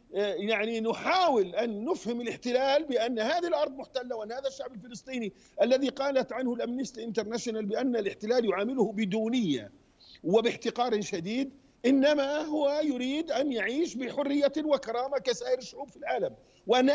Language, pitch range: Arabic, 235-275 Hz